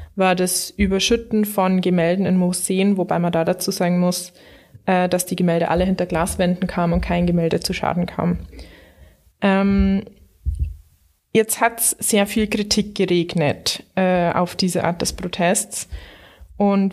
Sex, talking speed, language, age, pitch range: female, 150 wpm, German, 20-39, 180-205 Hz